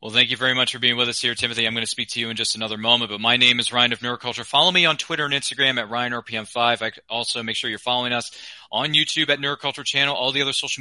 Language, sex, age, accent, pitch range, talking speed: English, male, 30-49, American, 115-150 Hz, 290 wpm